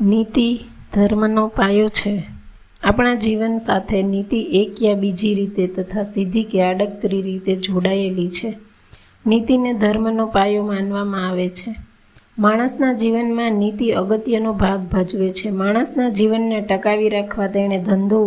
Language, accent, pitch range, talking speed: Gujarati, native, 195-225 Hz, 120 wpm